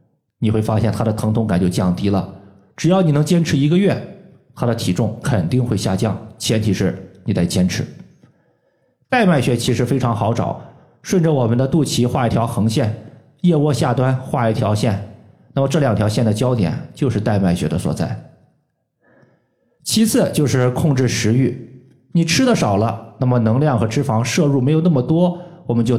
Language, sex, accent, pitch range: Chinese, male, native, 110-155 Hz